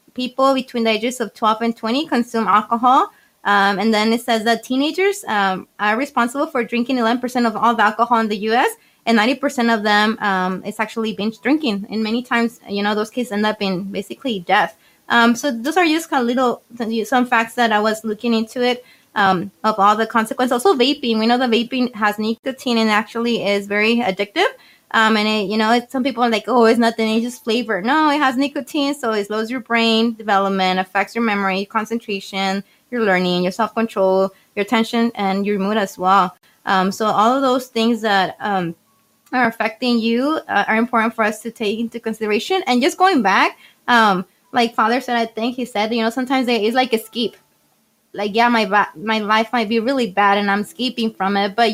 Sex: female